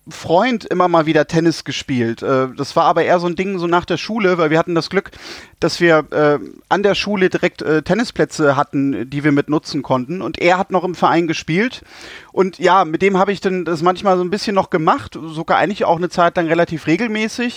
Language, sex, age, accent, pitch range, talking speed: German, male, 30-49, German, 145-185 Hz, 225 wpm